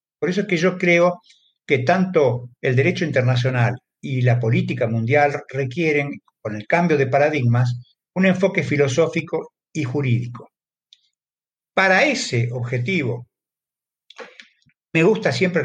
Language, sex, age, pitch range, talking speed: Spanish, male, 60-79, 125-175 Hz, 125 wpm